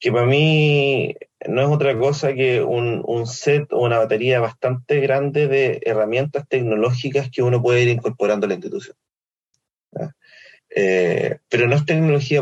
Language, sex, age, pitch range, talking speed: Spanish, male, 20-39, 110-140 Hz, 155 wpm